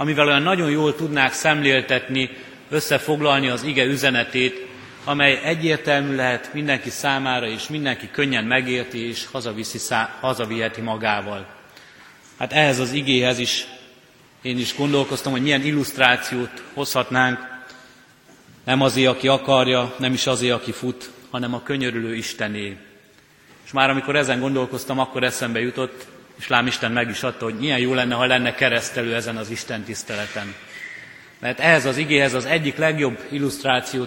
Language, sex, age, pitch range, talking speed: Hungarian, male, 30-49, 125-140 Hz, 140 wpm